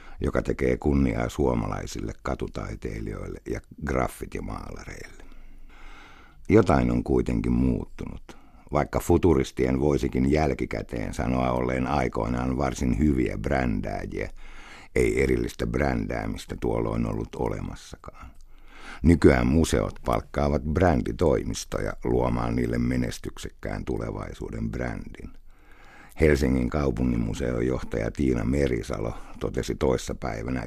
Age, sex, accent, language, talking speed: 60-79, male, native, Finnish, 90 wpm